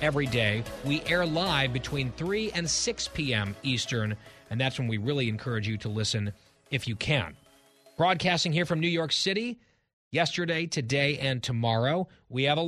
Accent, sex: American, male